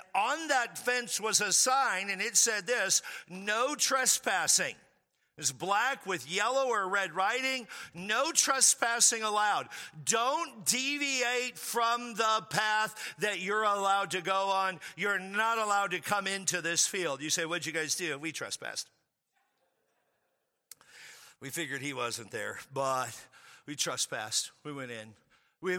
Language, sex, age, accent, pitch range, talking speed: English, male, 50-69, American, 180-250 Hz, 140 wpm